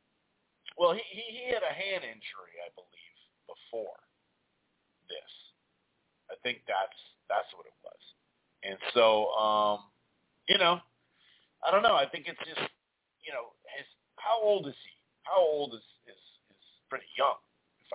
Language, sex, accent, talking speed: English, male, American, 155 wpm